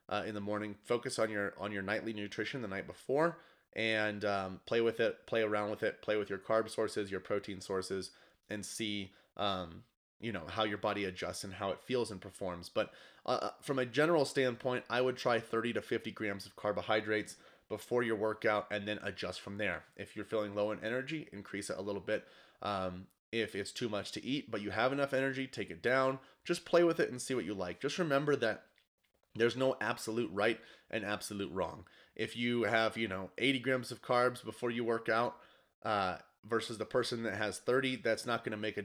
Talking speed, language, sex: 215 wpm, English, male